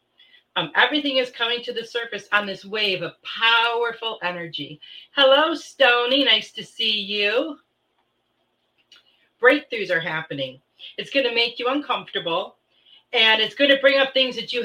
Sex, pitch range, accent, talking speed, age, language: female, 195-250 Hz, American, 150 wpm, 40-59, English